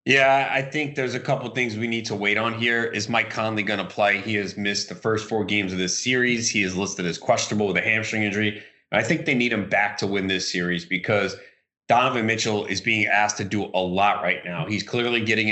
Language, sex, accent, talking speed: English, male, American, 250 wpm